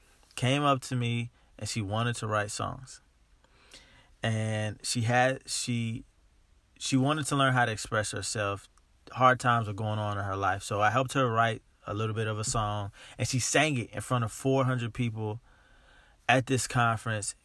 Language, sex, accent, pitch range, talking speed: English, male, American, 105-130 Hz, 180 wpm